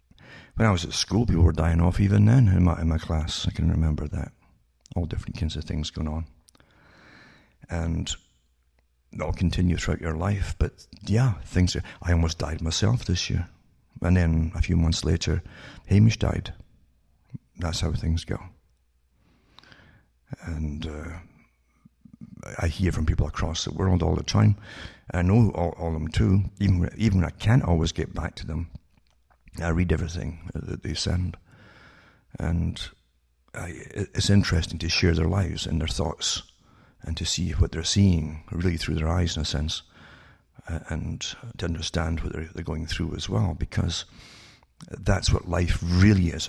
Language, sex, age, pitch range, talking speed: English, male, 60-79, 80-95 Hz, 165 wpm